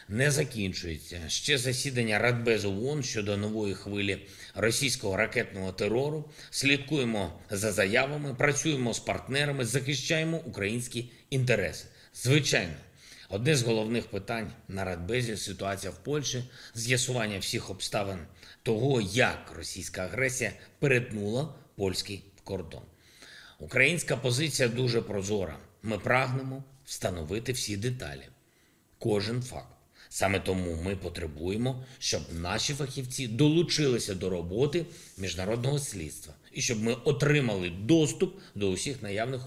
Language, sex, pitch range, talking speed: Ukrainian, male, 100-135 Hz, 110 wpm